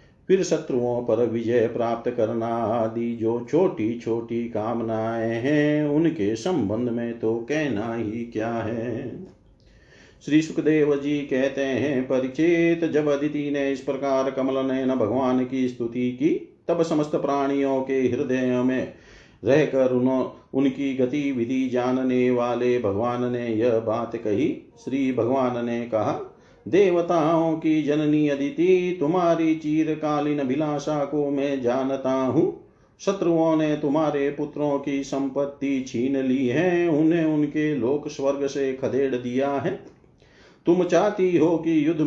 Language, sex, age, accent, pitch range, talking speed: Hindi, male, 50-69, native, 125-150 Hz, 130 wpm